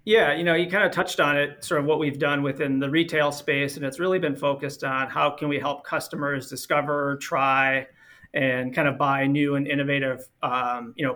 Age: 30-49